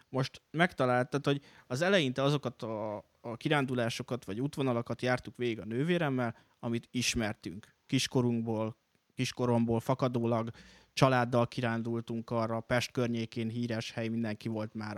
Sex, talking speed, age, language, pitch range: male, 120 wpm, 20-39, Hungarian, 115-130 Hz